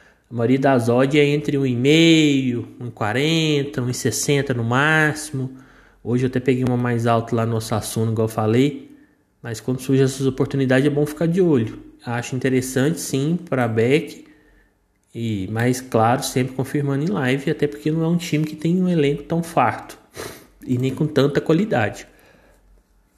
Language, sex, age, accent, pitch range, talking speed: Portuguese, male, 20-39, Brazilian, 120-150 Hz, 165 wpm